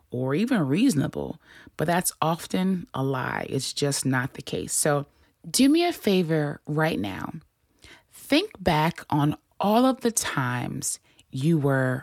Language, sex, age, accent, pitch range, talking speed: English, female, 20-39, American, 135-215 Hz, 145 wpm